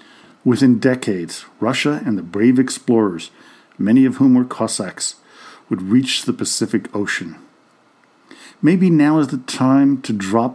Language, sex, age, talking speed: English, male, 50-69, 135 wpm